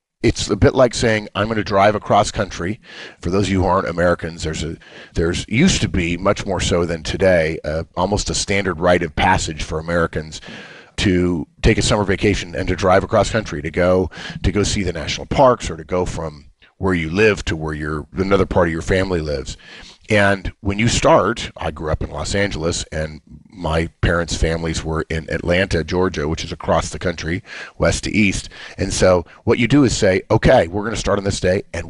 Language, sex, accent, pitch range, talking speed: English, male, American, 85-105 Hz, 210 wpm